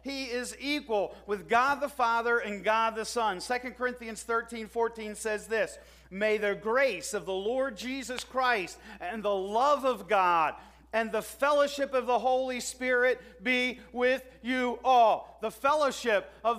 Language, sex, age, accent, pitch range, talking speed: English, male, 40-59, American, 225-275 Hz, 160 wpm